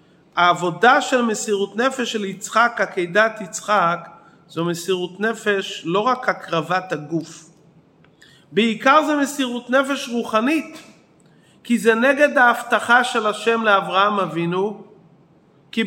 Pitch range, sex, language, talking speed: 205-245 Hz, male, Hebrew, 110 wpm